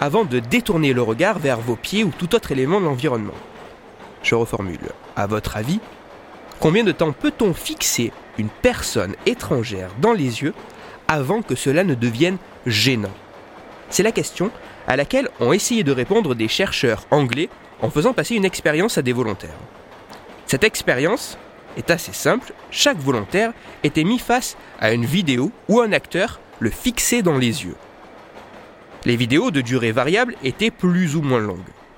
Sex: male